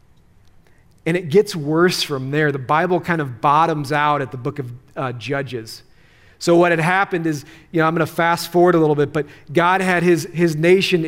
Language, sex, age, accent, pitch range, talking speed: English, male, 40-59, American, 150-190 Hz, 205 wpm